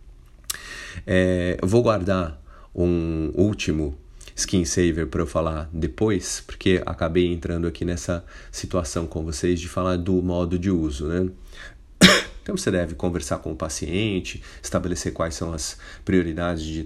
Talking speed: 140 wpm